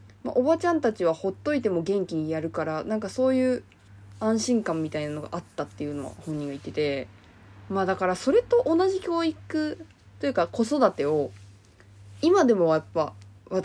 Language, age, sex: Japanese, 20-39, female